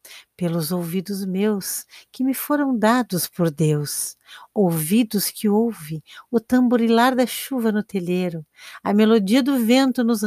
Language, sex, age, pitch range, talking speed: Portuguese, female, 50-69, 165-220 Hz, 135 wpm